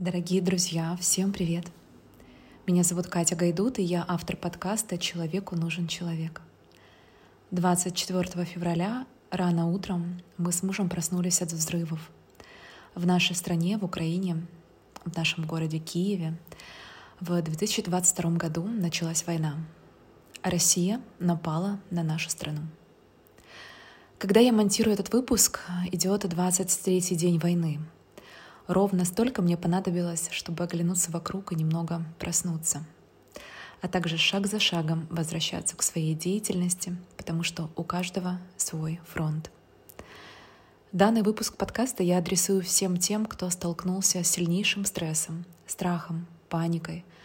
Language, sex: Russian, female